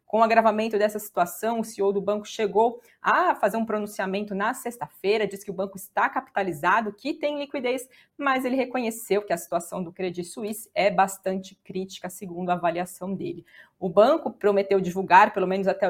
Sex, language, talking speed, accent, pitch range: female, Portuguese, 180 wpm, Brazilian, 190-230 Hz